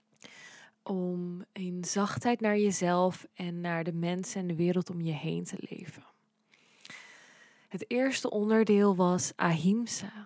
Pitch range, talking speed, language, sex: 175-210 Hz, 130 wpm, Dutch, female